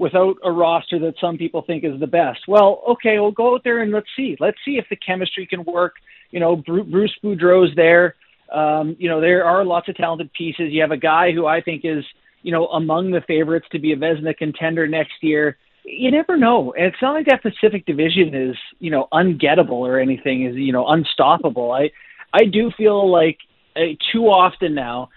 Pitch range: 150-195 Hz